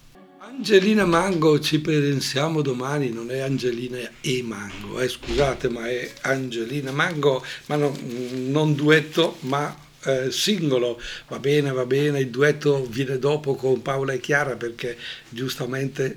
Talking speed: 135 wpm